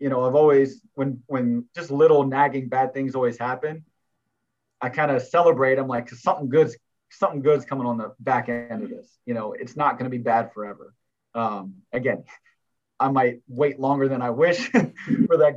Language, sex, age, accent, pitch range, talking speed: English, male, 30-49, American, 115-135 Hz, 190 wpm